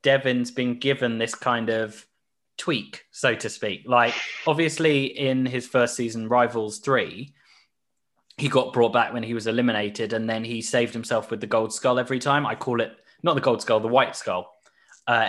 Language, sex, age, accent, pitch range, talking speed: English, male, 20-39, British, 115-145 Hz, 190 wpm